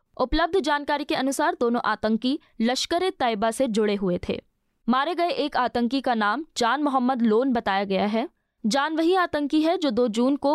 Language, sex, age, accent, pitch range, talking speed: Hindi, female, 20-39, native, 225-290 Hz, 190 wpm